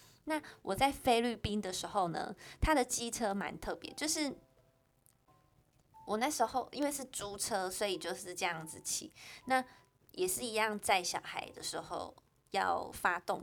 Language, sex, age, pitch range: Chinese, female, 20-39, 185-255 Hz